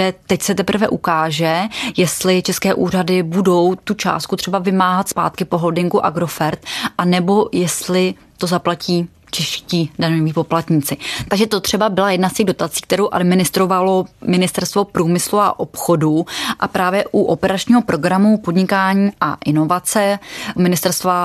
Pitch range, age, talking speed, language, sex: 175-195 Hz, 20-39, 135 wpm, Czech, female